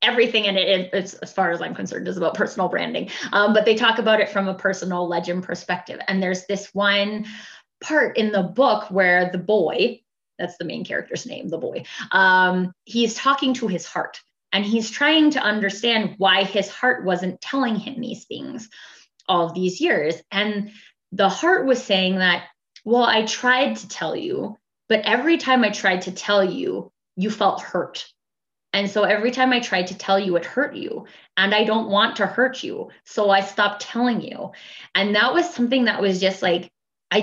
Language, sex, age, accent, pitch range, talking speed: English, female, 20-39, American, 185-230 Hz, 190 wpm